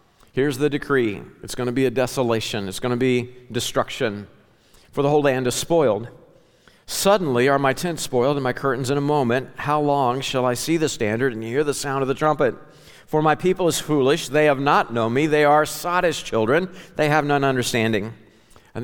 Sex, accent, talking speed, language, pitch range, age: male, American, 200 wpm, English, 115-150 Hz, 50-69